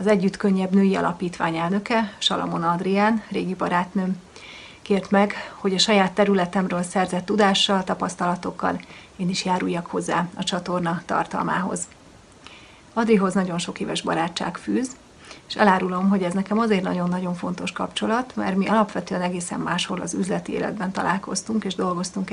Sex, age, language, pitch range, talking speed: female, 30-49, Hungarian, 180-210 Hz, 140 wpm